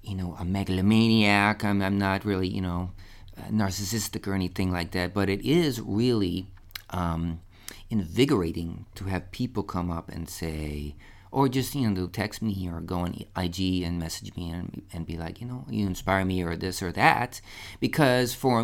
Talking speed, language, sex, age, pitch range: 180 wpm, English, male, 40-59, 95-110 Hz